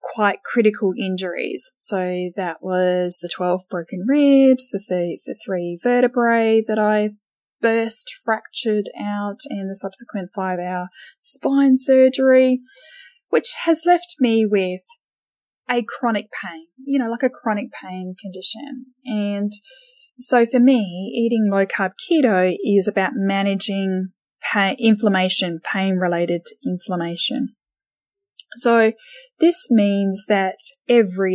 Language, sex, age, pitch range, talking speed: English, female, 10-29, 190-255 Hz, 120 wpm